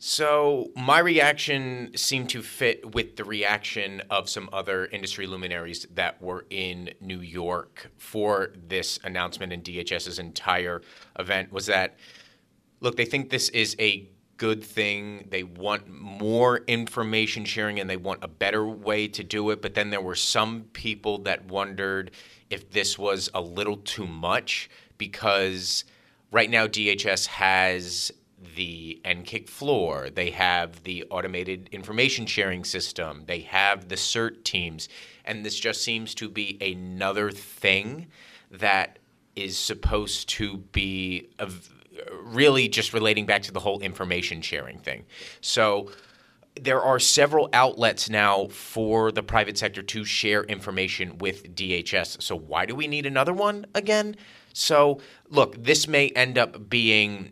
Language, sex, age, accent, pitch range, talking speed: English, male, 30-49, American, 95-115 Hz, 145 wpm